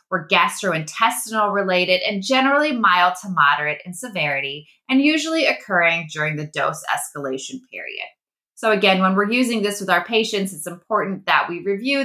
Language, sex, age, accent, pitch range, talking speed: English, female, 20-39, American, 160-225 Hz, 160 wpm